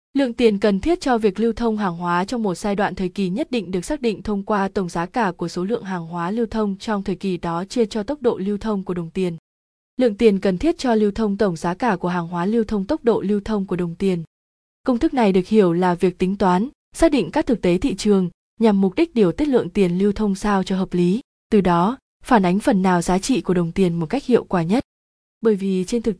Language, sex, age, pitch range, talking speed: Vietnamese, female, 20-39, 180-225 Hz, 270 wpm